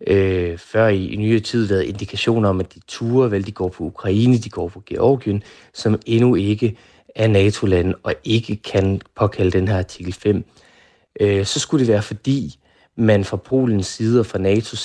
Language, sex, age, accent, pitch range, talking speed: Danish, male, 30-49, native, 95-115 Hz, 185 wpm